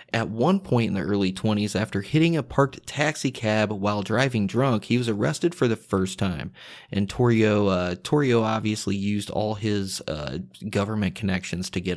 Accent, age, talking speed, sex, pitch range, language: American, 30-49, 180 wpm, male, 100-125 Hz, English